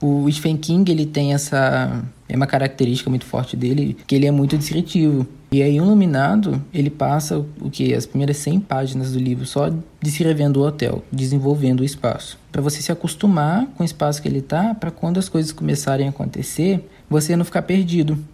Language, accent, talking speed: Portuguese, Brazilian, 190 wpm